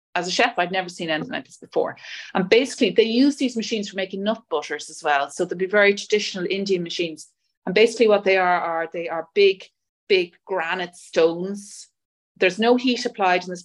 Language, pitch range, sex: English, 170-205 Hz, female